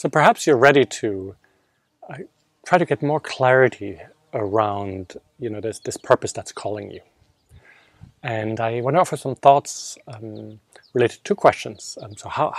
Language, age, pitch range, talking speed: English, 40-59, 110-145 Hz, 160 wpm